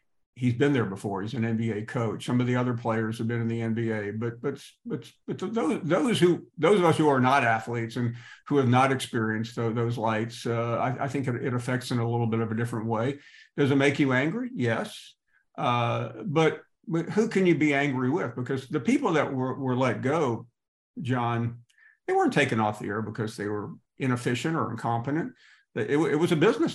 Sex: male